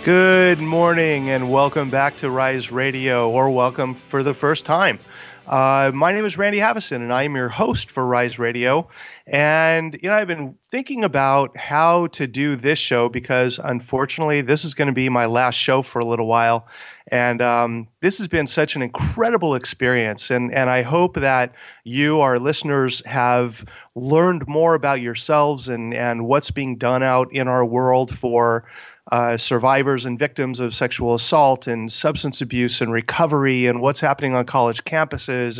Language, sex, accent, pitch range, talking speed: English, male, American, 125-150 Hz, 175 wpm